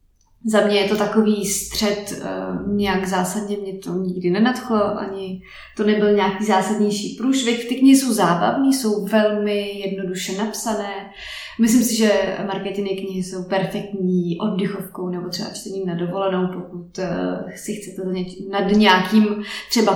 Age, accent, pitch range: 20-39, native, 185-220 Hz